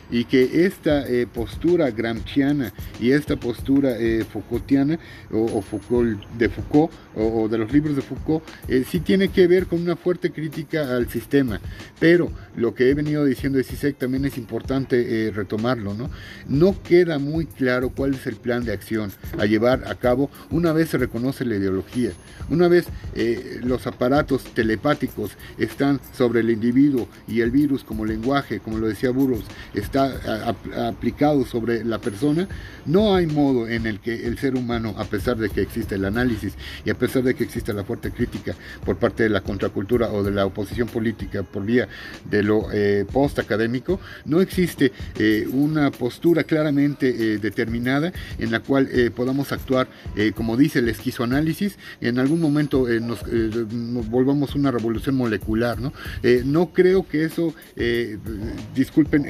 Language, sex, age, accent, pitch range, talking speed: Spanish, male, 50-69, Mexican, 110-140 Hz, 175 wpm